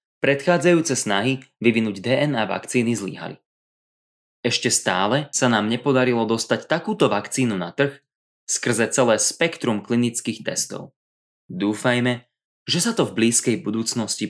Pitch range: 105-130 Hz